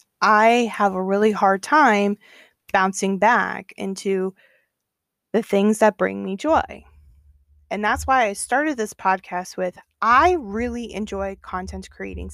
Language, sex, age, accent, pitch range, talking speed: English, female, 20-39, American, 195-240 Hz, 135 wpm